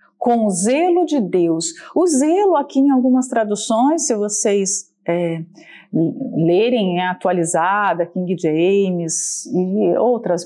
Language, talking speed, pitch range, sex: Portuguese, 120 wpm, 195-265 Hz, female